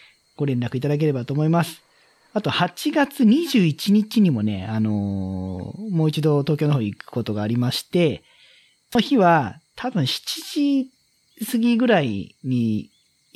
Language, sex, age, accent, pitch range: Japanese, male, 40-59, native, 130-195 Hz